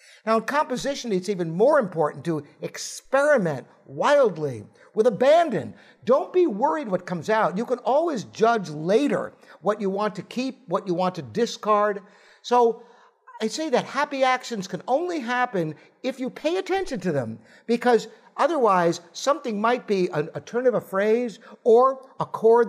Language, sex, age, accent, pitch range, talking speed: English, male, 50-69, American, 195-270 Hz, 160 wpm